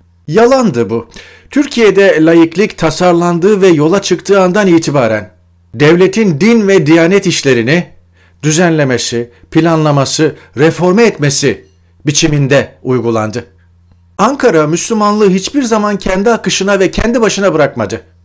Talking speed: 100 wpm